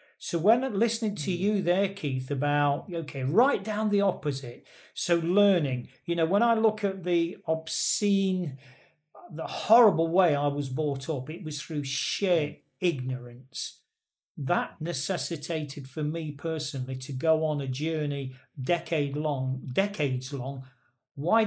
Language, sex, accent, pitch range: English, male, British, 135-180 Hz